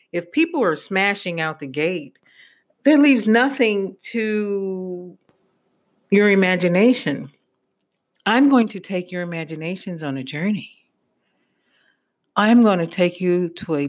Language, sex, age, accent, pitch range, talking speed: English, female, 50-69, American, 155-205 Hz, 125 wpm